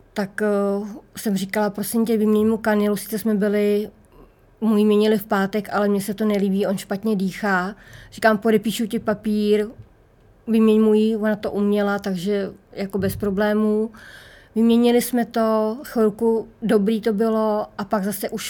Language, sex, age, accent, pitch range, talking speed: Czech, female, 20-39, native, 200-225 Hz, 155 wpm